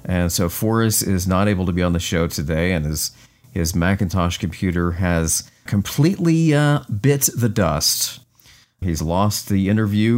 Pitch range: 85-120 Hz